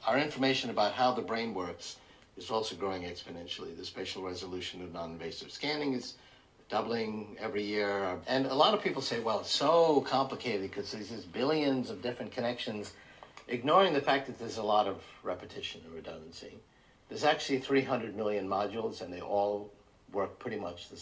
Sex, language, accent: male, English, American